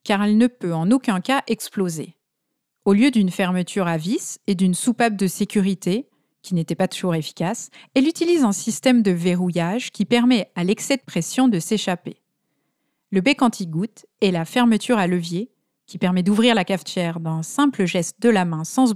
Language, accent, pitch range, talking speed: French, French, 180-250 Hz, 190 wpm